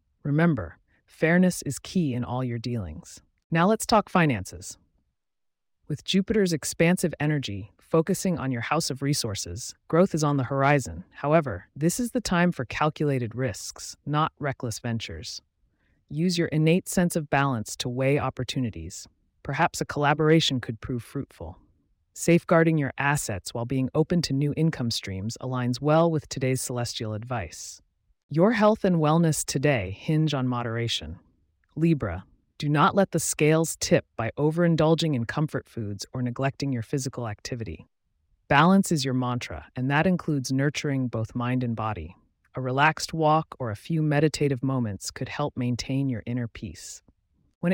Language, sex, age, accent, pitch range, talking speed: English, female, 30-49, American, 115-160 Hz, 150 wpm